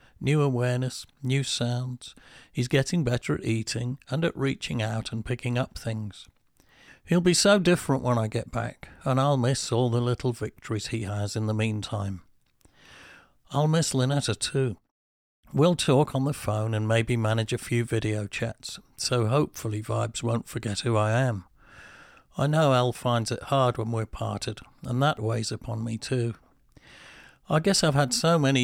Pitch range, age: 110-135 Hz, 50-69